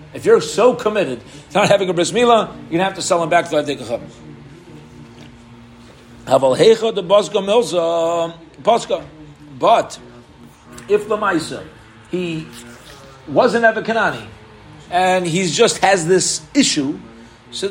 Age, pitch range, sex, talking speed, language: 40-59, 150-195 Hz, male, 115 wpm, English